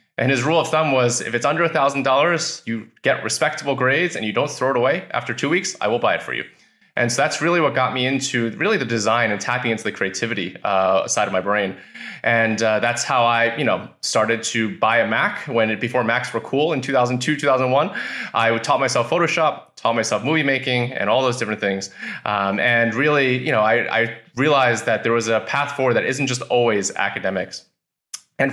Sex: male